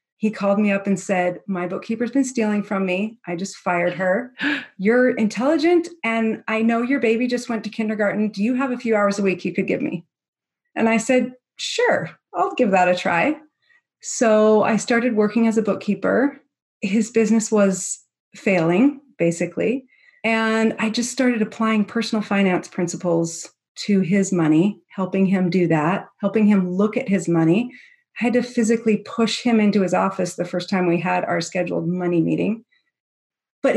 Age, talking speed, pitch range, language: 30-49, 180 wpm, 185-240 Hz, English